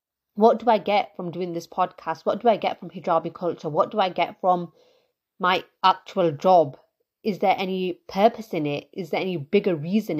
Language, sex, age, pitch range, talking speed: English, female, 30-49, 170-220 Hz, 200 wpm